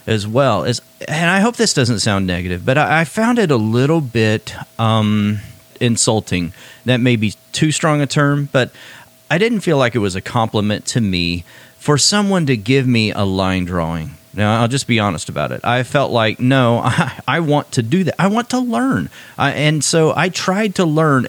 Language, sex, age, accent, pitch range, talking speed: English, male, 40-59, American, 110-150 Hz, 205 wpm